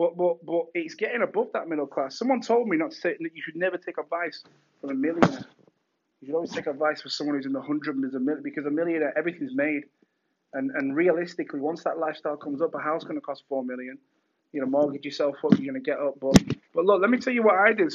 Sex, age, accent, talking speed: male, 20-39, British, 265 wpm